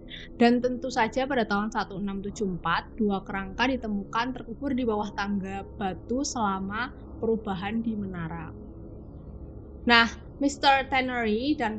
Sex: female